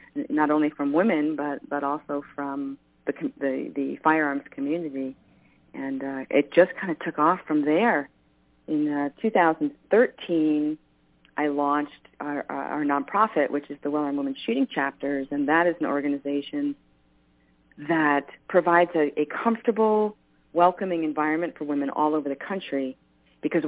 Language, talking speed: English, 150 wpm